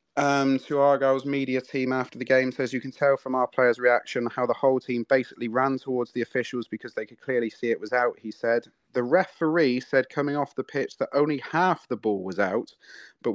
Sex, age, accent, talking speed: male, 30-49, British, 225 wpm